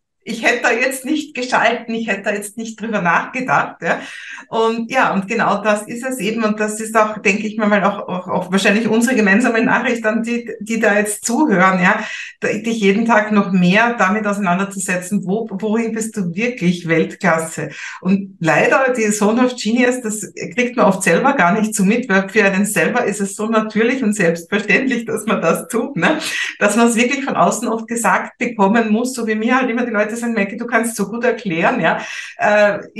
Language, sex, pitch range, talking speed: German, female, 200-235 Hz, 200 wpm